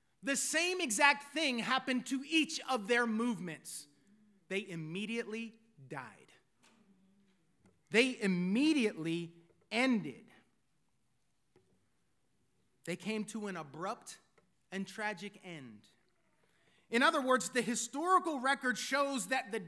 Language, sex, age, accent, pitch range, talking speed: English, male, 30-49, American, 205-290 Hz, 100 wpm